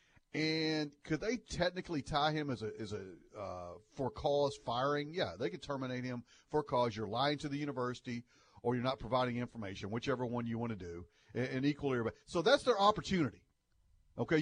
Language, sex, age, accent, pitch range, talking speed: English, male, 40-59, American, 120-180 Hz, 185 wpm